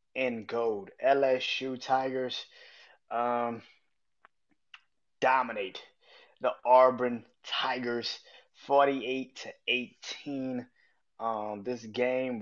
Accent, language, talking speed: American, English, 70 wpm